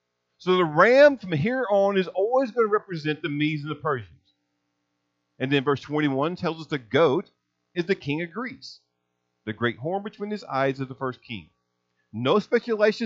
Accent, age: American, 40-59